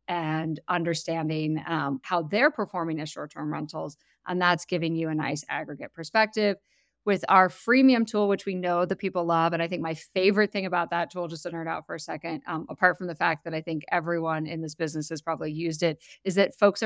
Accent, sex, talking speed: American, female, 225 wpm